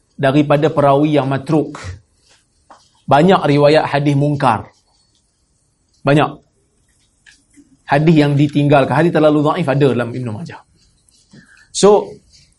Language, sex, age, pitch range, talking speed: Malay, male, 30-49, 145-195 Hz, 95 wpm